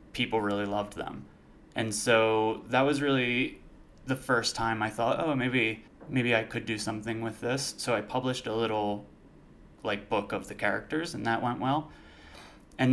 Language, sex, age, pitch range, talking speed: English, male, 20-39, 110-125 Hz, 175 wpm